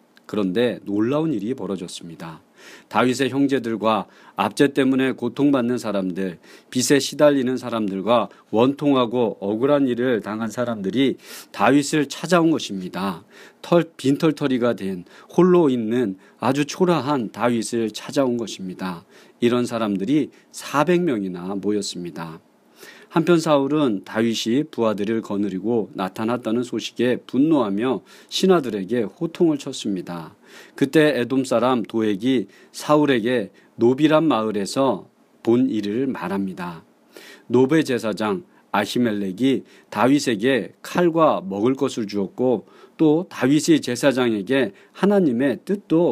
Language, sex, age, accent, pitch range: Korean, male, 40-59, native, 105-145 Hz